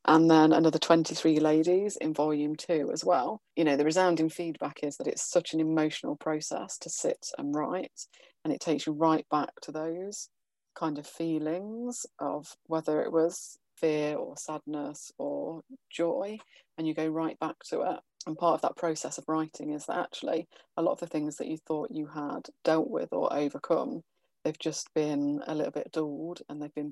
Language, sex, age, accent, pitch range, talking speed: English, female, 30-49, British, 150-165 Hz, 195 wpm